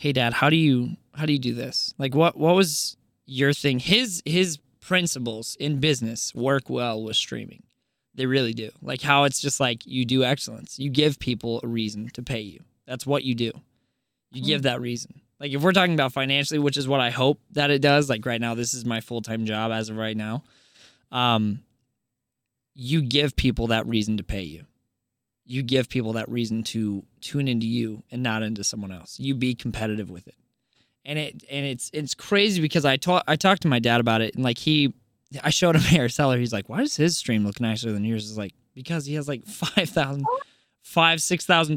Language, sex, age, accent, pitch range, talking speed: English, male, 20-39, American, 115-150 Hz, 215 wpm